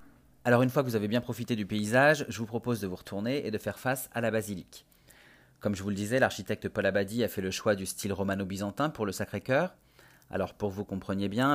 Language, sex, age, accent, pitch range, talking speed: French, male, 30-49, French, 100-120 Hz, 245 wpm